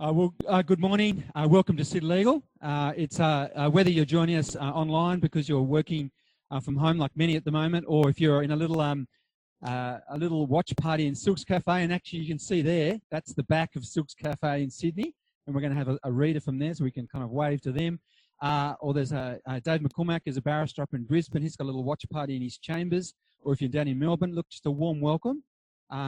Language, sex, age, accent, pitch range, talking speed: English, male, 30-49, Australian, 130-160 Hz, 255 wpm